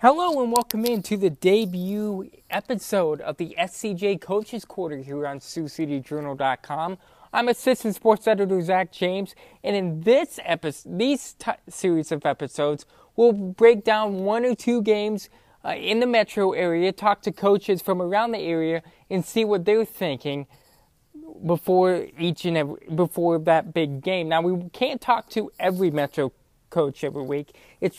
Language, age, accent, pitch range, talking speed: English, 20-39, American, 160-205 Hz, 160 wpm